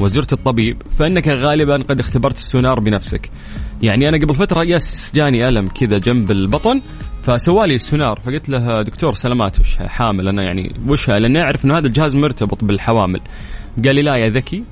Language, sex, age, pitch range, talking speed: Arabic, male, 20-39, 105-140 Hz, 165 wpm